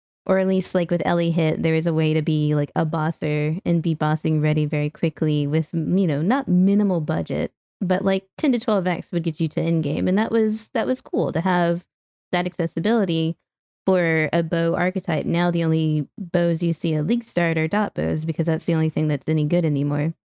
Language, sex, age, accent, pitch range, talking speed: English, female, 20-39, American, 155-180 Hz, 220 wpm